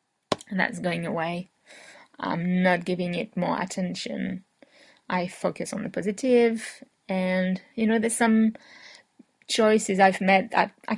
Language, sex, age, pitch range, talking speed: English, female, 20-39, 190-245 Hz, 135 wpm